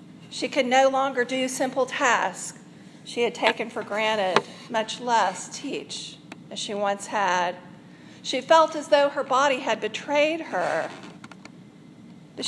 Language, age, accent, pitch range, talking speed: English, 40-59, American, 210-255 Hz, 140 wpm